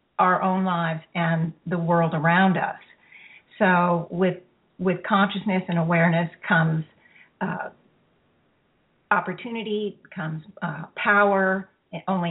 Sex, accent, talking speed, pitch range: female, American, 100 wpm, 170-200 Hz